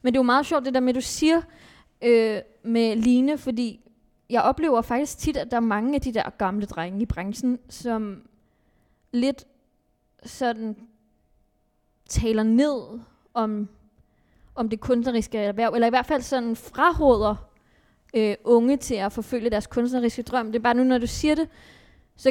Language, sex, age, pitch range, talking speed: Danish, female, 20-39, 220-255 Hz, 170 wpm